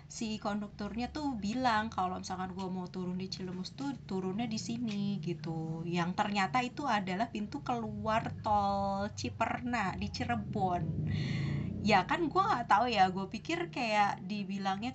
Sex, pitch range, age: female, 185-235 Hz, 20-39